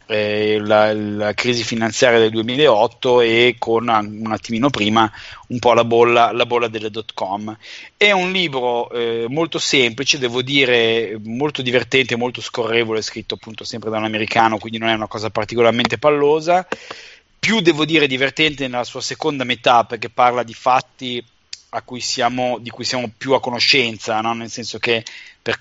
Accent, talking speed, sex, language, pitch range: native, 165 wpm, male, Italian, 110-125 Hz